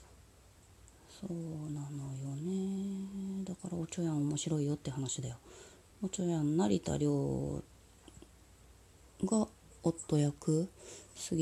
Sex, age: female, 30-49